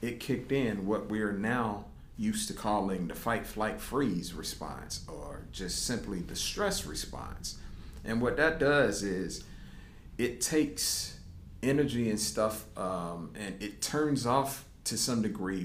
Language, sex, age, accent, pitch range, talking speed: English, male, 40-59, American, 90-115 Hz, 140 wpm